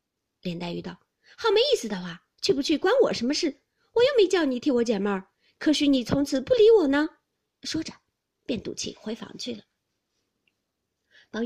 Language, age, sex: Chinese, 30-49, female